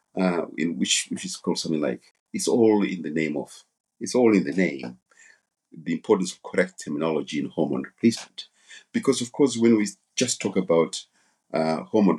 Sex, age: male, 50-69